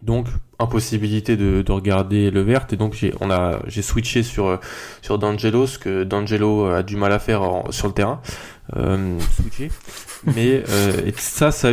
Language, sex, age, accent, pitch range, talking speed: French, male, 20-39, French, 100-120 Hz, 185 wpm